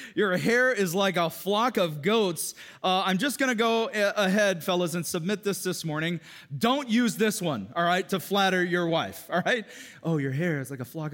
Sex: male